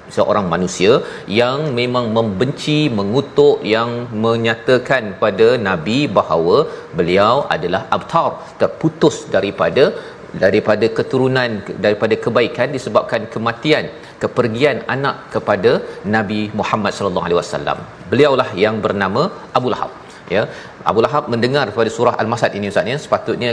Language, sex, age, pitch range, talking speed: Malayalam, male, 40-59, 110-145 Hz, 115 wpm